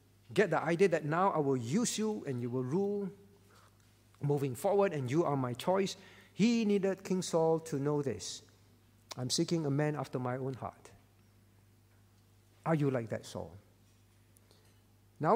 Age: 50-69